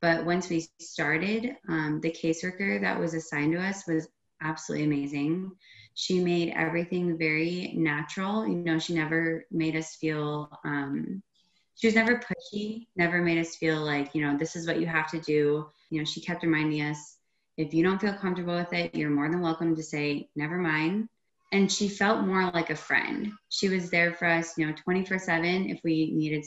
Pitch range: 155-180 Hz